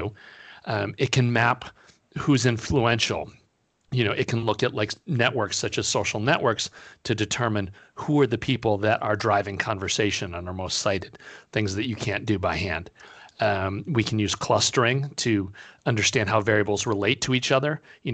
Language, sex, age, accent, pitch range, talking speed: English, male, 40-59, American, 100-120 Hz, 175 wpm